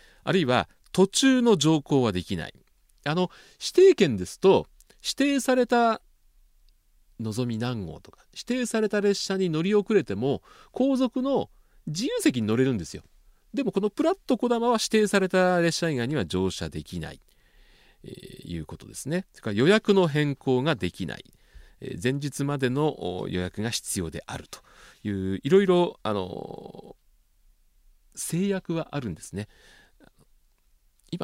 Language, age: Japanese, 40-59